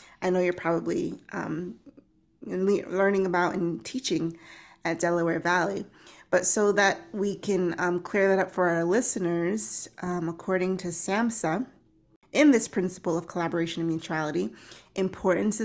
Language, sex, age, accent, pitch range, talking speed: English, female, 20-39, American, 165-195 Hz, 140 wpm